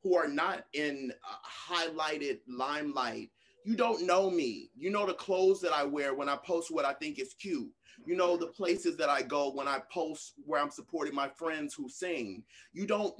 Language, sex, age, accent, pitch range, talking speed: English, male, 30-49, American, 145-220 Hz, 200 wpm